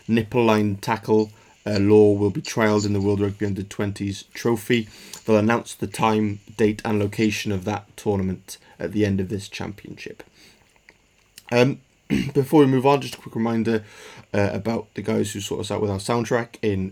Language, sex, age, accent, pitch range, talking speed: English, male, 20-39, British, 100-115 Hz, 180 wpm